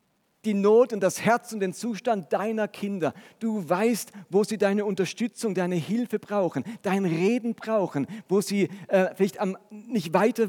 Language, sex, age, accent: German, male, 40-59, German